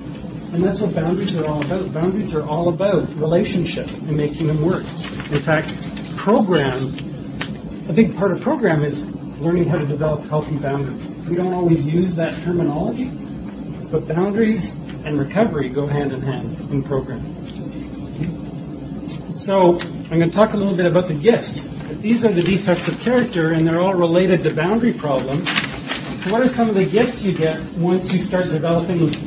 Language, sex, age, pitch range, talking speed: English, male, 40-59, 155-185 Hz, 170 wpm